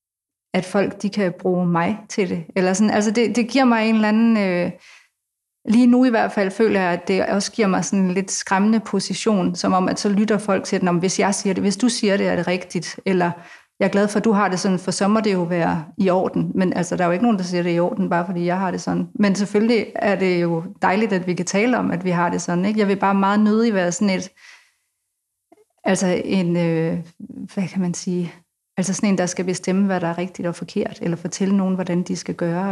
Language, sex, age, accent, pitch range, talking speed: Danish, female, 30-49, native, 180-210 Hz, 260 wpm